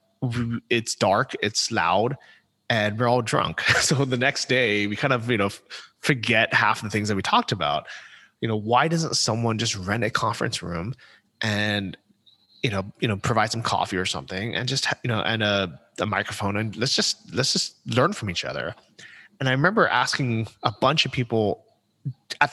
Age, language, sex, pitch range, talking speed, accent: 30-49, English, male, 105-135 Hz, 190 wpm, American